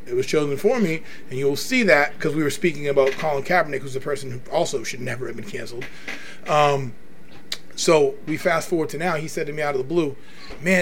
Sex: male